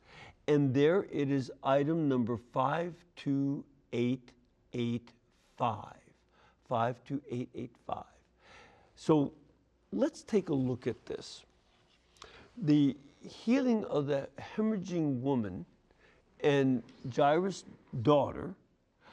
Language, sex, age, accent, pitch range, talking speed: English, male, 60-79, American, 120-155 Hz, 75 wpm